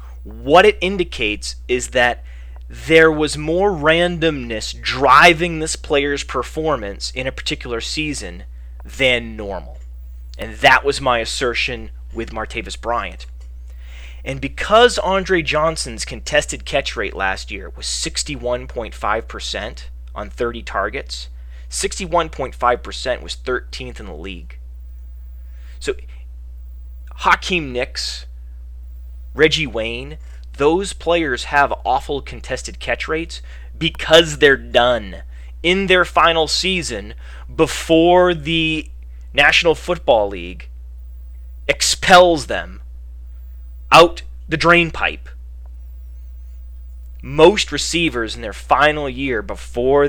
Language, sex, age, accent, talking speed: English, male, 30-49, American, 100 wpm